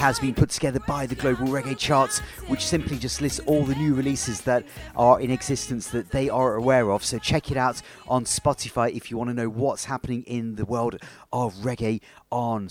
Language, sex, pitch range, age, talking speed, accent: English, male, 115-135 Hz, 40-59, 215 wpm, British